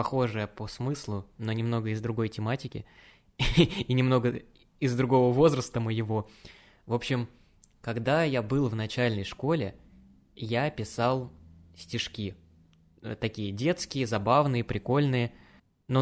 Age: 20-39